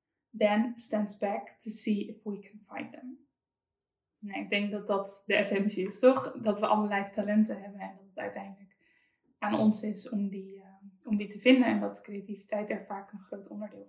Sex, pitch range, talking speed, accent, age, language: female, 200-225 Hz, 185 wpm, Dutch, 10-29, Dutch